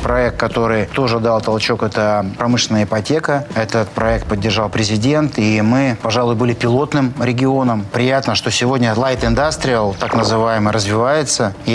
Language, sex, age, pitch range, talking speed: Russian, male, 30-49, 110-125 Hz, 140 wpm